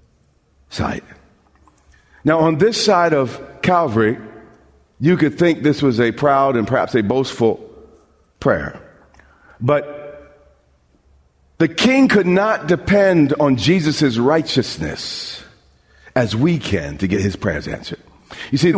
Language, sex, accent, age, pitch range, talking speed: English, male, American, 40-59, 120-175 Hz, 120 wpm